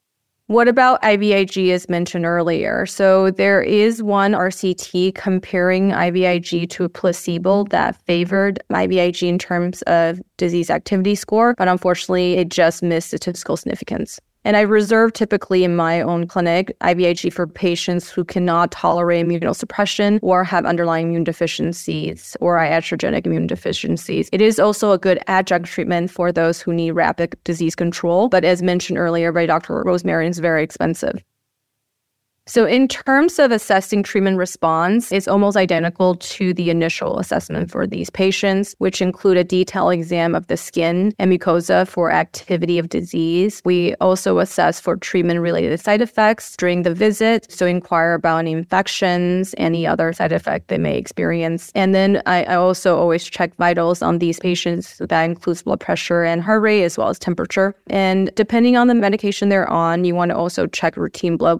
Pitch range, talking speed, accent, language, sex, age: 170-195 Hz, 165 wpm, American, English, female, 20-39